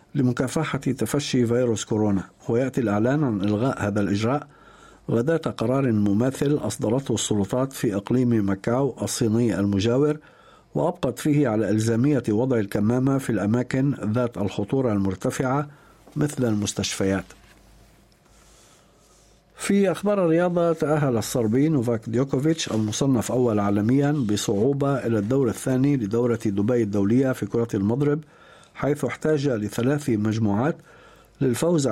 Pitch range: 110-140 Hz